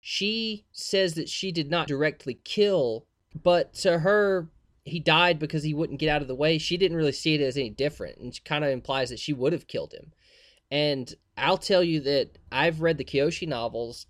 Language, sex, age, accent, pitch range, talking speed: English, male, 20-39, American, 130-175 Hz, 210 wpm